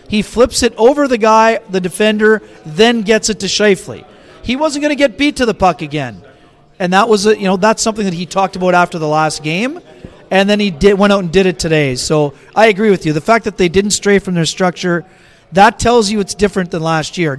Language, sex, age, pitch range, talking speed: English, male, 30-49, 185-220 Hz, 245 wpm